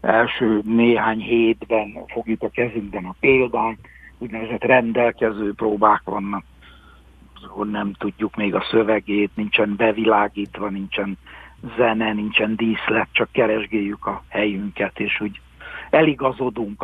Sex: male